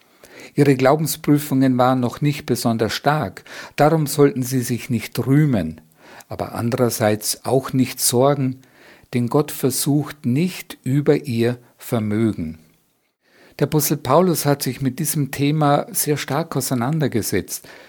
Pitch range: 115-145 Hz